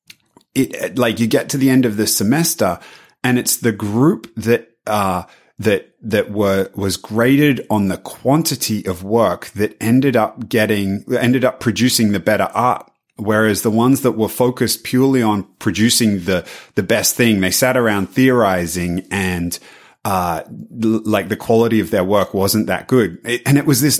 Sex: male